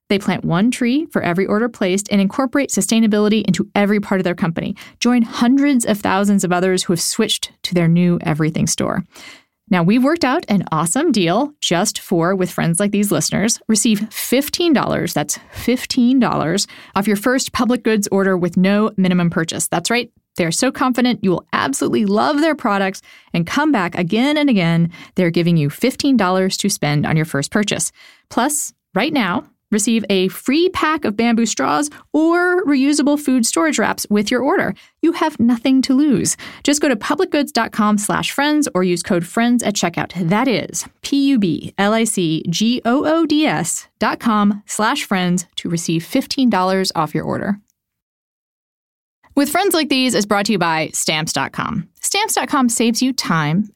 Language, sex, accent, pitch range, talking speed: English, female, American, 185-260 Hz, 165 wpm